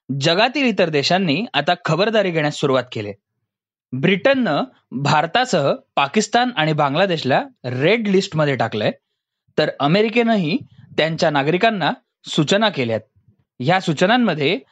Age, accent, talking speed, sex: 20-39, native, 100 wpm, male